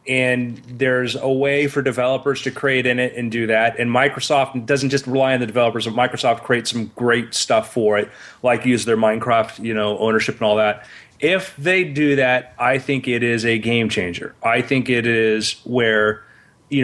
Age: 30-49